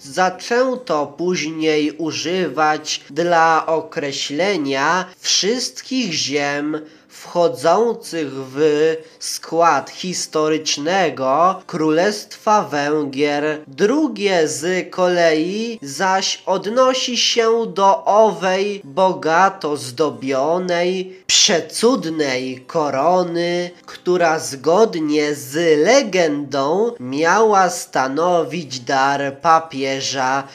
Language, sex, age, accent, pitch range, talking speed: Polish, male, 20-39, native, 145-180 Hz, 65 wpm